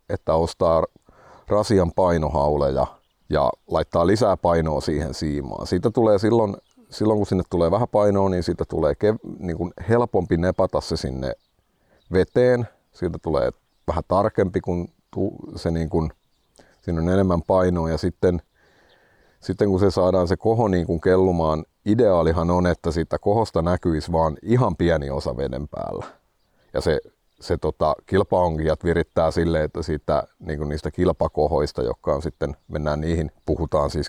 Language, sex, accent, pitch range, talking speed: Finnish, male, native, 75-95 Hz, 120 wpm